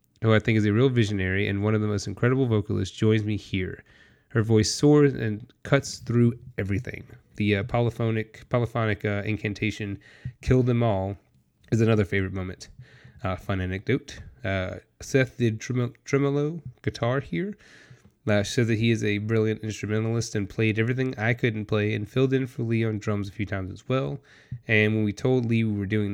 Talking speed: 185 wpm